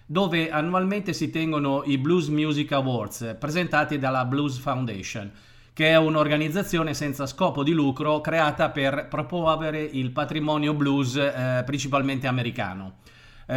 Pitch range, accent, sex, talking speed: 135-160 Hz, native, male, 130 wpm